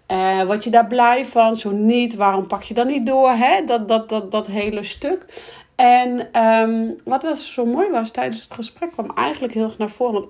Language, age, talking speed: Dutch, 40-59, 220 wpm